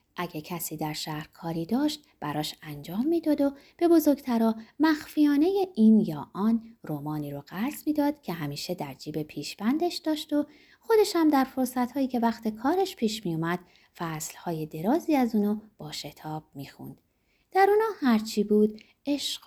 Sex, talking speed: female, 150 wpm